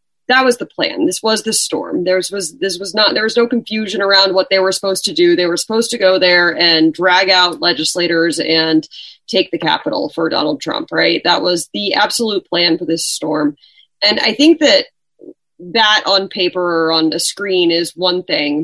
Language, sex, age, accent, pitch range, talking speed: English, female, 30-49, American, 175-225 Hz, 195 wpm